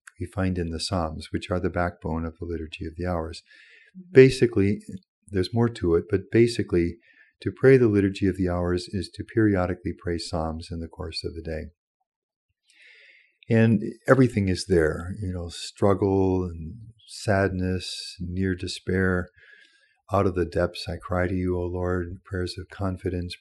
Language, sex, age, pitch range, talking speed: English, male, 50-69, 90-105 Hz, 165 wpm